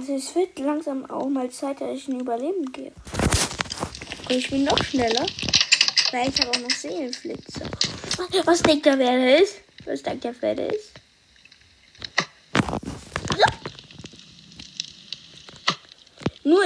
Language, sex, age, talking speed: German, female, 20-39, 110 wpm